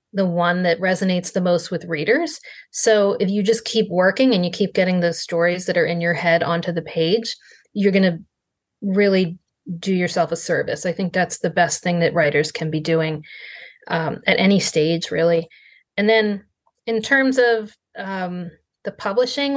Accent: American